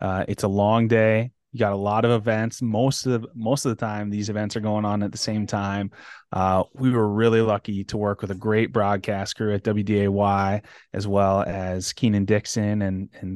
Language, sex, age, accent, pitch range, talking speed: English, male, 20-39, American, 100-115 Hz, 215 wpm